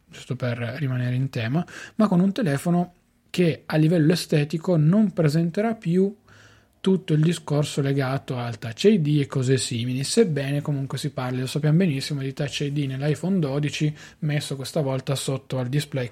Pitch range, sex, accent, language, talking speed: 135-160 Hz, male, native, Italian, 165 wpm